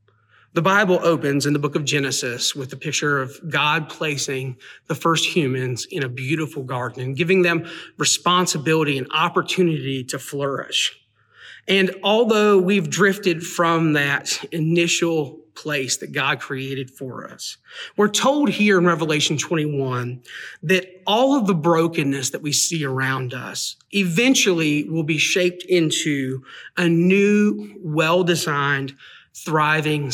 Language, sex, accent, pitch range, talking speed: English, male, American, 140-180 Hz, 135 wpm